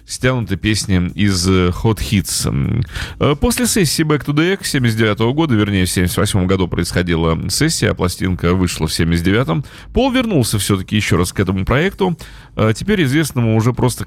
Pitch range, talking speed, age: 90-125 Hz, 150 wpm, 30-49